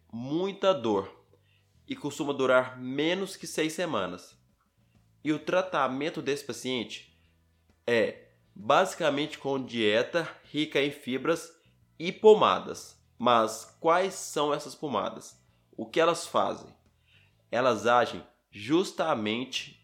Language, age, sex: Portuguese, 20-39, male